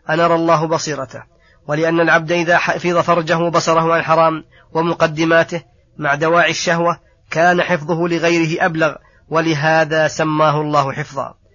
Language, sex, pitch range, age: Arabic, female, 145-170 Hz, 30-49